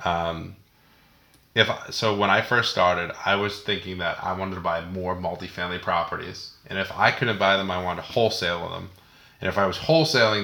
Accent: American